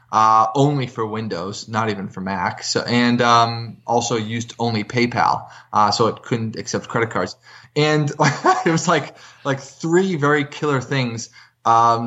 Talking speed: 160 wpm